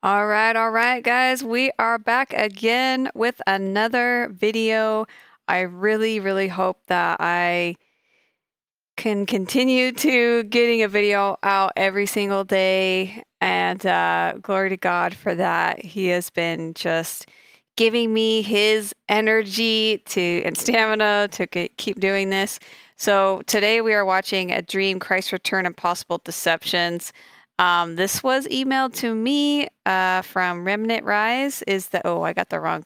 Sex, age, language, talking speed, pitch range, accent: female, 30-49, English, 145 wpm, 185-235 Hz, American